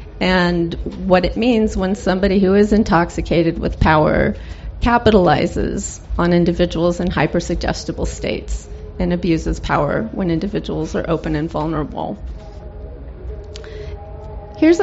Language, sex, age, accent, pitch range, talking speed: English, female, 30-49, American, 145-185 Hz, 115 wpm